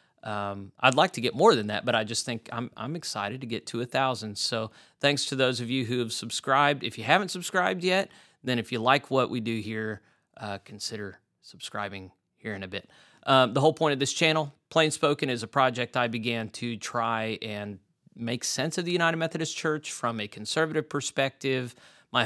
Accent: American